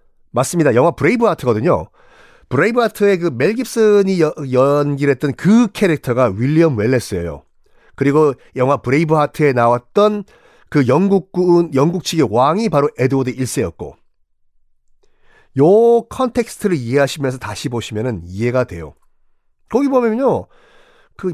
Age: 40-59